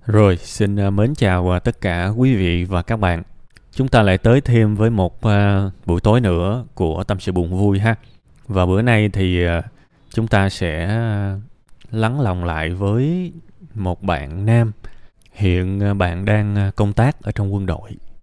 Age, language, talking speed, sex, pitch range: 20-39, Vietnamese, 165 wpm, male, 95-120 Hz